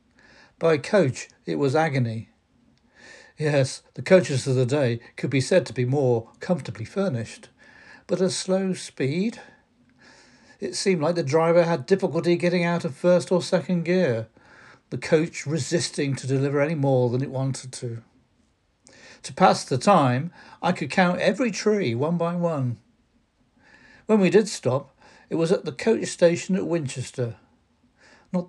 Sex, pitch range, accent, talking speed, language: male, 130-185 Hz, British, 155 wpm, English